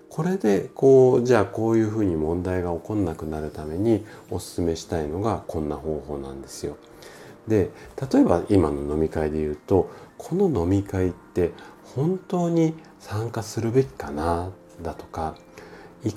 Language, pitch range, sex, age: Japanese, 80-135 Hz, male, 40-59